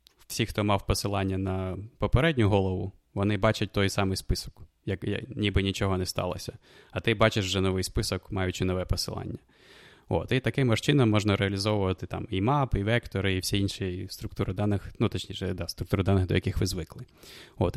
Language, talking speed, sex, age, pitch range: Ukrainian, 175 wpm, male, 20-39, 95-110 Hz